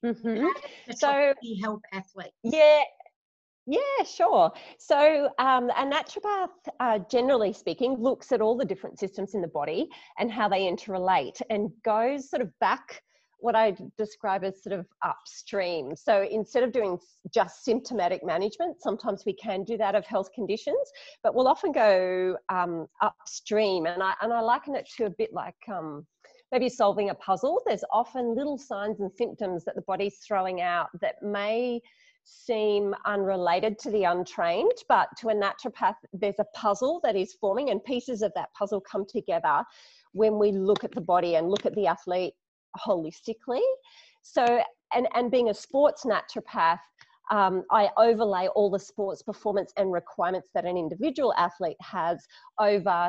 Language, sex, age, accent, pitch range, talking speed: English, female, 40-59, Australian, 190-250 Hz, 160 wpm